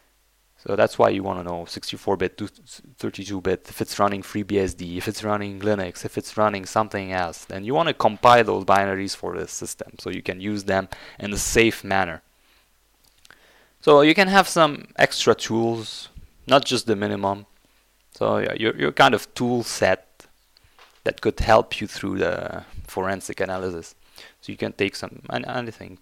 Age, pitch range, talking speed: 20-39, 95-125 Hz, 165 wpm